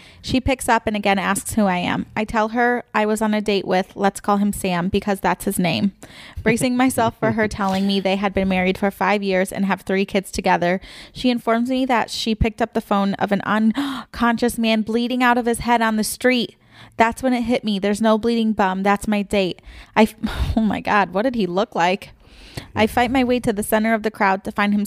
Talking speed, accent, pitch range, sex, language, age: 240 wpm, American, 195-225 Hz, female, English, 20-39